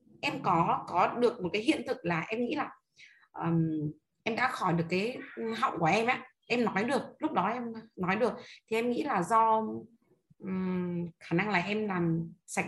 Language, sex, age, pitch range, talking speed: Vietnamese, female, 20-39, 185-250 Hz, 200 wpm